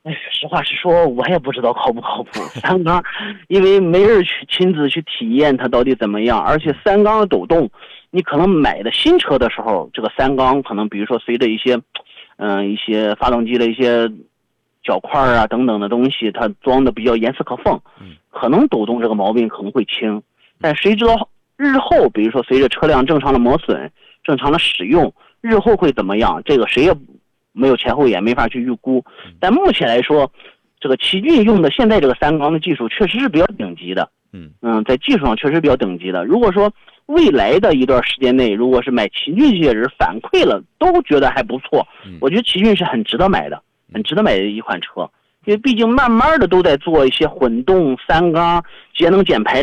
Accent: native